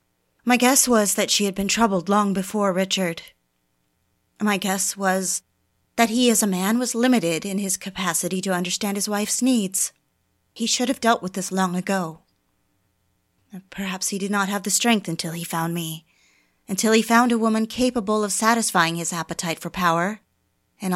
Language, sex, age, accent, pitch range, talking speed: English, female, 30-49, American, 170-225 Hz, 175 wpm